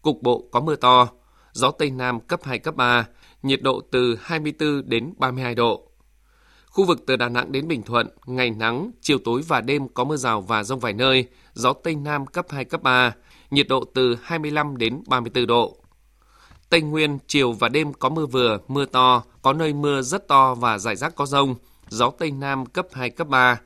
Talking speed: 205 wpm